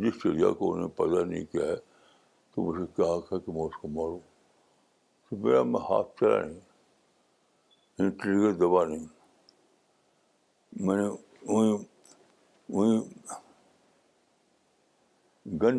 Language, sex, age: Urdu, male, 60-79